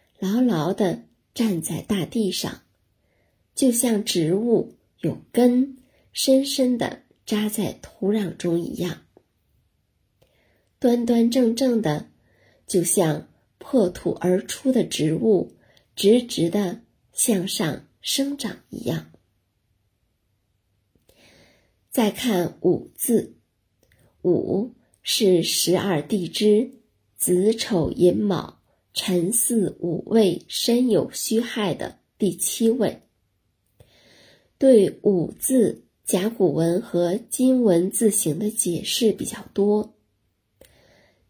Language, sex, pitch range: Chinese, female, 170-225 Hz